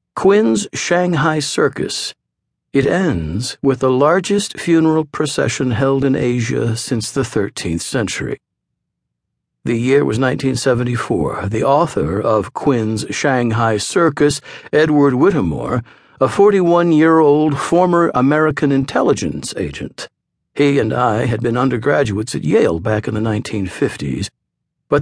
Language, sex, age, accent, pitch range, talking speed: English, male, 60-79, American, 115-150 Hz, 115 wpm